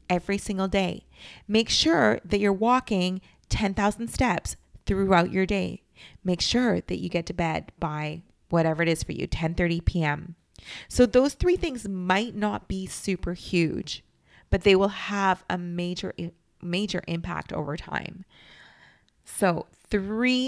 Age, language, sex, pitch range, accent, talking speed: 30-49, English, female, 170-230 Hz, American, 145 wpm